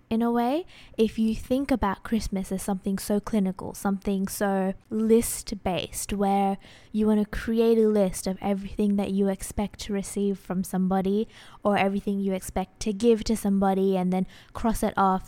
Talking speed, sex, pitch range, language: 175 wpm, female, 190-220 Hz, English